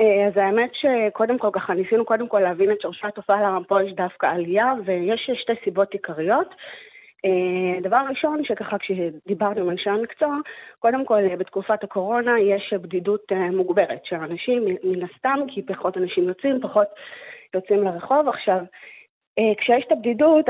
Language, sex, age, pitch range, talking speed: Hebrew, female, 30-49, 190-255 Hz, 145 wpm